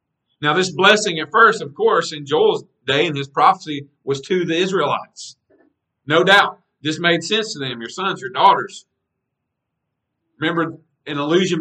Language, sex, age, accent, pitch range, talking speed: English, male, 40-59, American, 130-175 Hz, 160 wpm